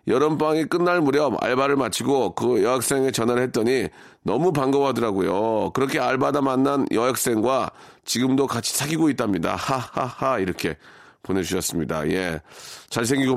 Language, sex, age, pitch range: Korean, male, 40-59, 100-145 Hz